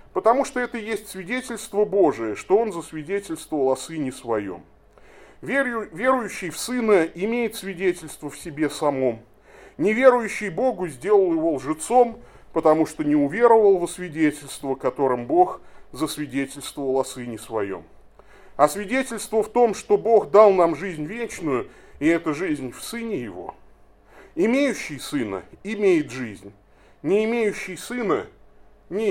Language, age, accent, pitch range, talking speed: Russian, 30-49, native, 145-230 Hz, 125 wpm